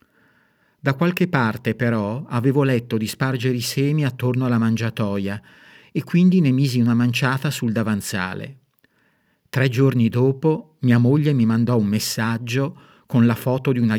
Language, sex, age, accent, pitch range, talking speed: Italian, male, 50-69, native, 110-140 Hz, 150 wpm